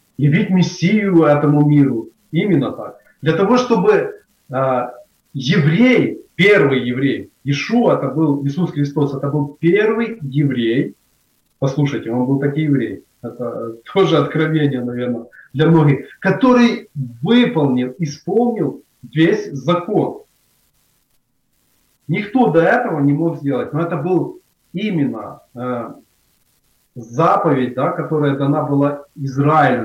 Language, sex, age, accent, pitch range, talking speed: Ukrainian, male, 30-49, native, 140-180 Hz, 115 wpm